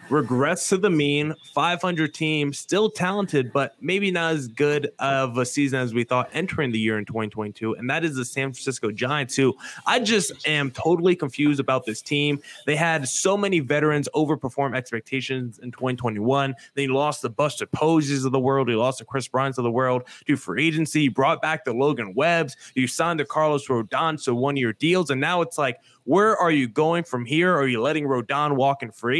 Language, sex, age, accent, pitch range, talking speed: English, male, 20-39, American, 130-160 Hz, 215 wpm